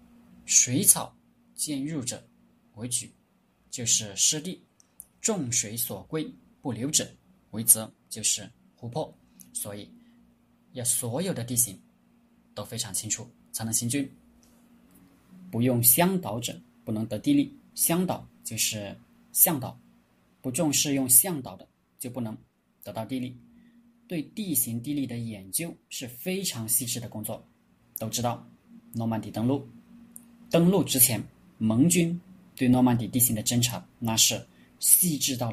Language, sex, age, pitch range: Chinese, male, 20-39, 110-150 Hz